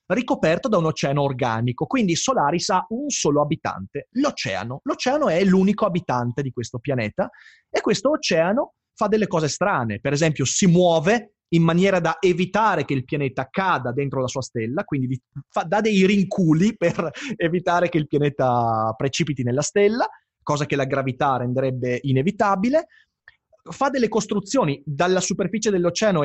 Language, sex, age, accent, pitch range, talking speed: Italian, male, 30-49, native, 135-205 Hz, 150 wpm